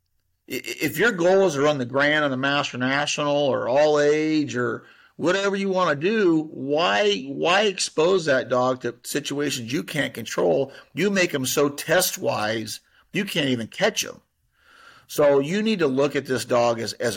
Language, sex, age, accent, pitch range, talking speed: English, male, 50-69, American, 125-155 Hz, 180 wpm